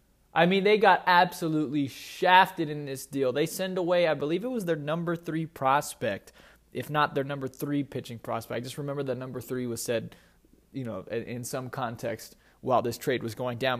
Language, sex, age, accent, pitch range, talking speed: English, male, 20-39, American, 120-160 Hz, 200 wpm